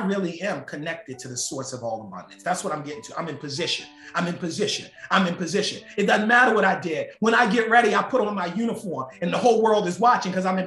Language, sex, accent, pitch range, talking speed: English, male, American, 200-265 Hz, 265 wpm